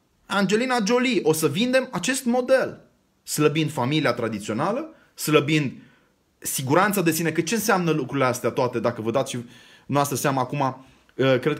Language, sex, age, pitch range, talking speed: Romanian, male, 30-49, 150-215 Hz, 140 wpm